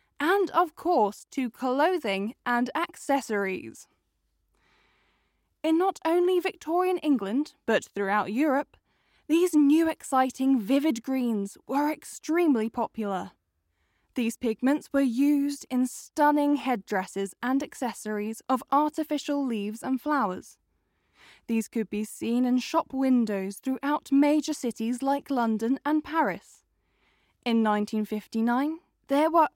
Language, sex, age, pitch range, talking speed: English, female, 10-29, 220-295 Hz, 110 wpm